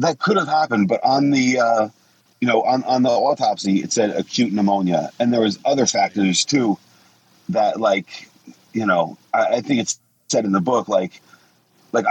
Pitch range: 100-125 Hz